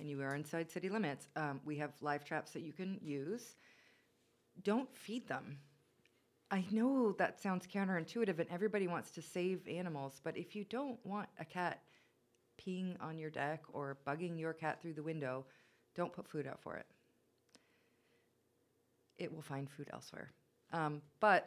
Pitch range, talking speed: 140-170 Hz, 170 wpm